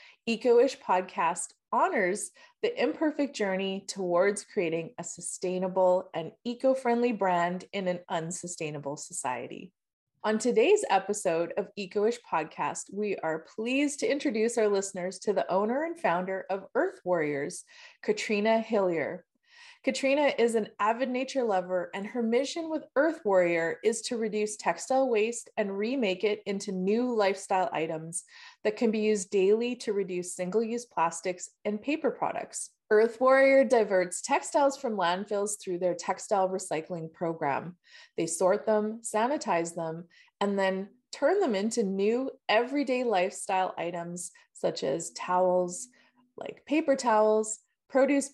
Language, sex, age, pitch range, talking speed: English, female, 20-39, 185-250 Hz, 135 wpm